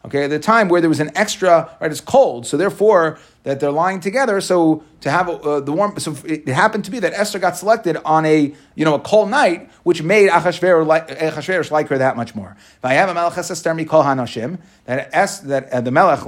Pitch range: 140-195 Hz